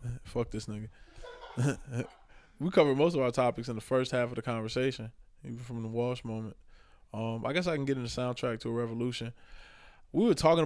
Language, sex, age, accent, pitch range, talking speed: English, male, 20-39, American, 110-125 Hz, 205 wpm